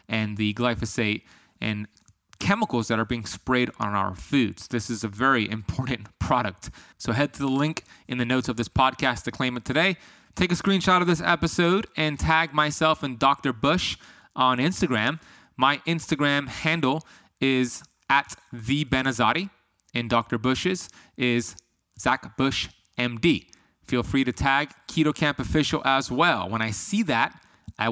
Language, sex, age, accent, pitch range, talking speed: English, male, 20-39, American, 115-145 Hz, 150 wpm